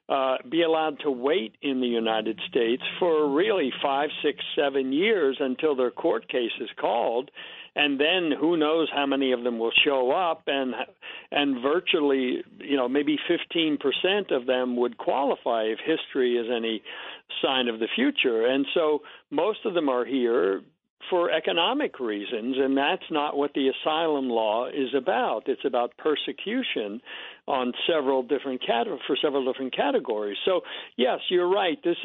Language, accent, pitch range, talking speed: English, American, 130-160 Hz, 165 wpm